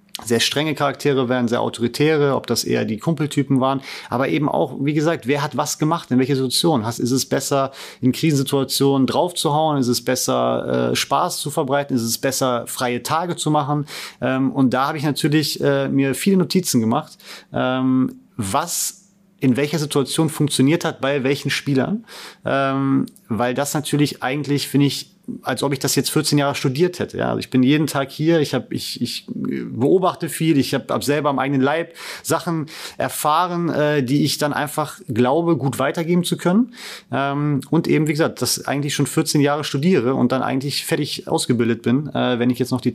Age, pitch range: 30-49, 130-155 Hz